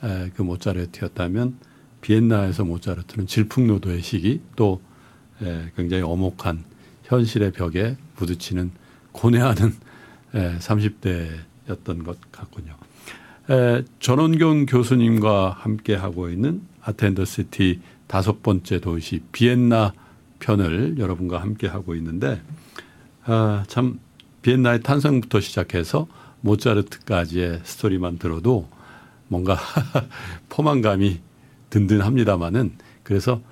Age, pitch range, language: 50-69, 90-120 Hz, Korean